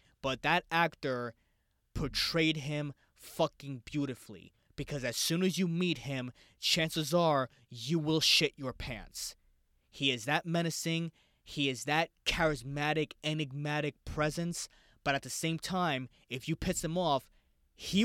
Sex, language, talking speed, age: male, English, 140 wpm, 20-39